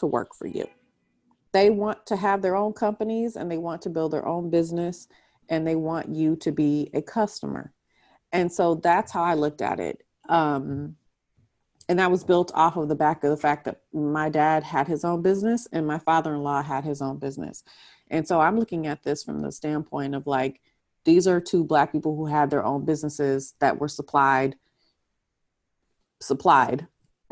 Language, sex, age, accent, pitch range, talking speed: English, female, 30-49, American, 145-175 Hz, 190 wpm